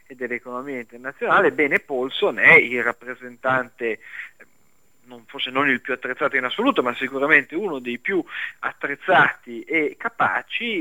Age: 40-59